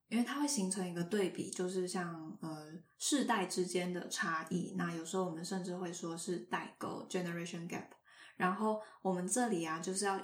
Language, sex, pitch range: Chinese, female, 180-220 Hz